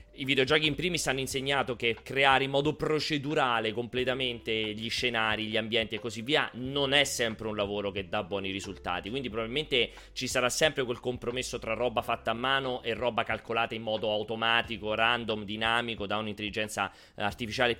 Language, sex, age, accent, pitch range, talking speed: Italian, male, 30-49, native, 110-135 Hz, 170 wpm